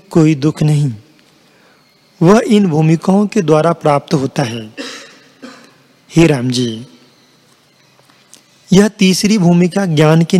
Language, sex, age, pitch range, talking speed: Hindi, male, 40-59, 150-185 Hz, 100 wpm